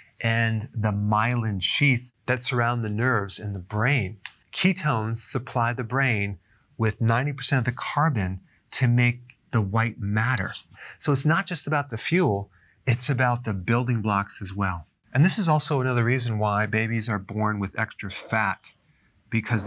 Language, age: English, 40-59